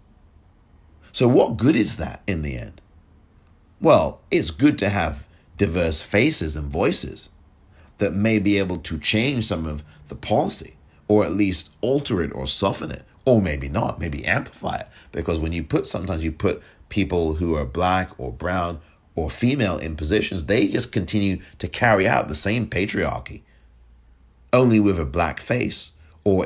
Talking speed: 165 wpm